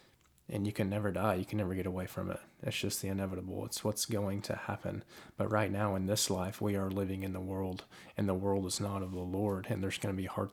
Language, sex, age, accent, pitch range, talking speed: English, male, 20-39, American, 95-110 Hz, 270 wpm